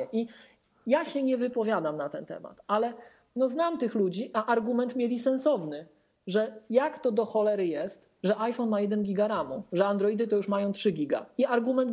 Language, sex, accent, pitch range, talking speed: Polish, male, native, 165-245 Hz, 190 wpm